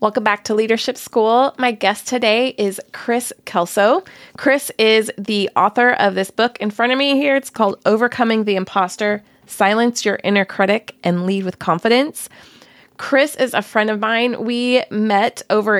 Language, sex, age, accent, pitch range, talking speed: English, female, 20-39, American, 185-225 Hz, 170 wpm